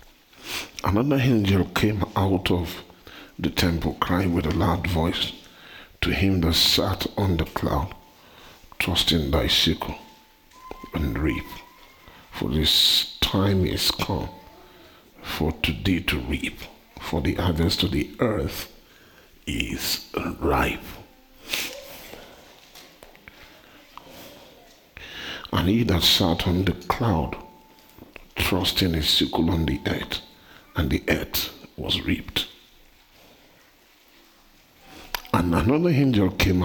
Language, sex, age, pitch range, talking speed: English, male, 50-69, 85-95 Hz, 105 wpm